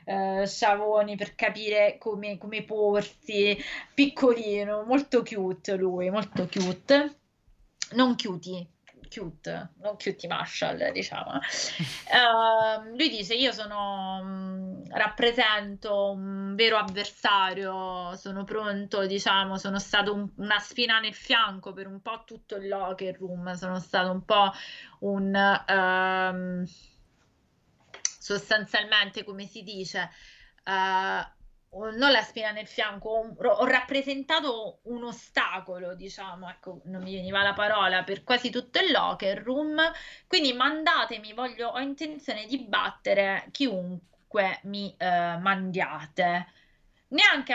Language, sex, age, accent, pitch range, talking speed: Italian, female, 20-39, native, 190-235 Hz, 105 wpm